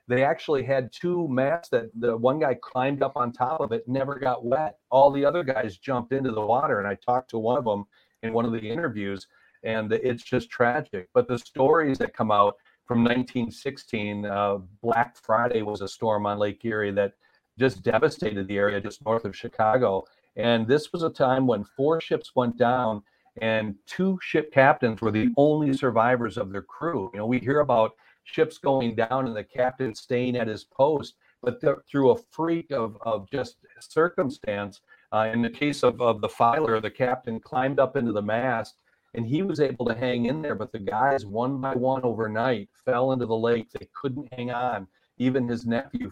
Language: English